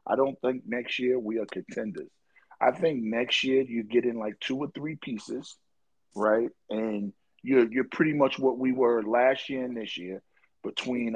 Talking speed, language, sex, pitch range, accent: 190 wpm, English, male, 120-150 Hz, American